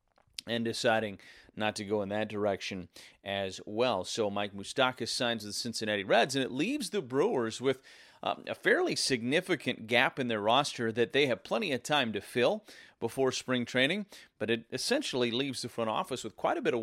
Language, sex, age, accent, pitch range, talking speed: English, male, 30-49, American, 110-130 Hz, 195 wpm